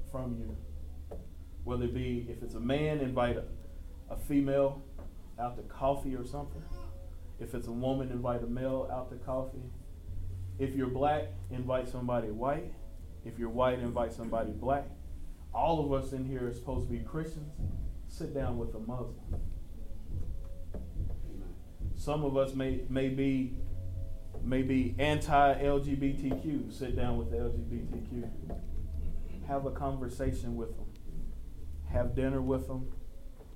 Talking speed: 135 wpm